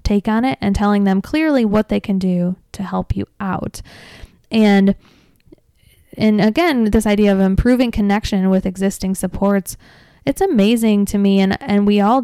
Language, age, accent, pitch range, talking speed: English, 20-39, American, 190-220 Hz, 160 wpm